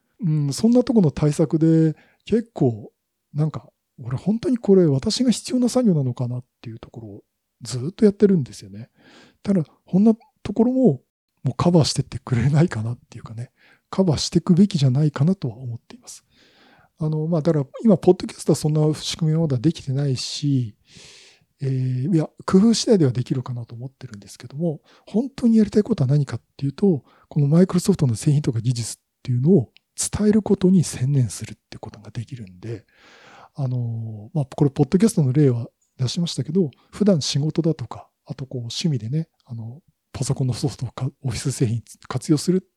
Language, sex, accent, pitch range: Japanese, male, native, 125-175 Hz